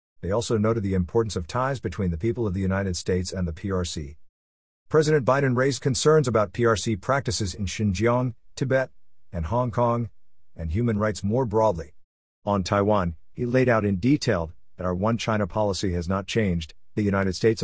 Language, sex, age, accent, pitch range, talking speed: English, male, 50-69, American, 90-120 Hz, 175 wpm